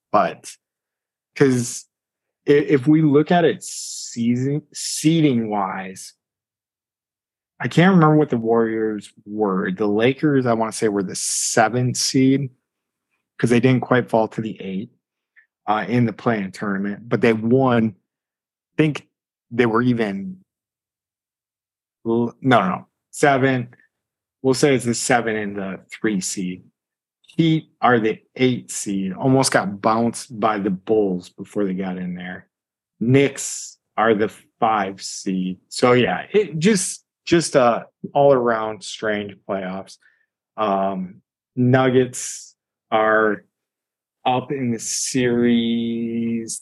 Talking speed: 125 wpm